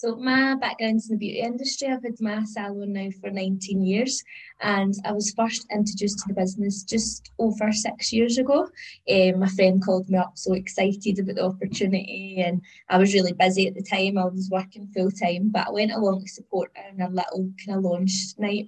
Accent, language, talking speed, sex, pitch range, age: British, English, 210 wpm, female, 185-225 Hz, 20-39